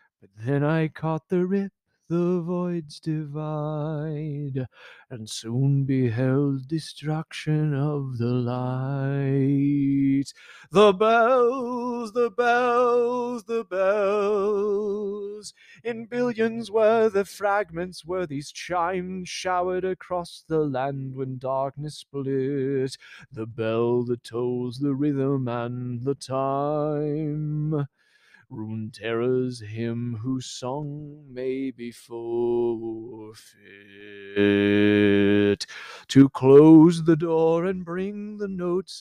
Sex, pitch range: male, 125-170 Hz